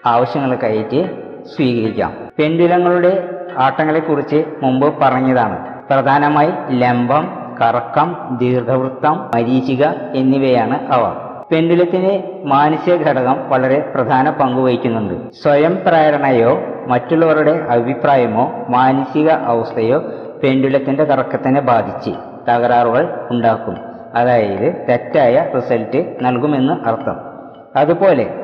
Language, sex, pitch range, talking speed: Malayalam, female, 125-150 Hz, 75 wpm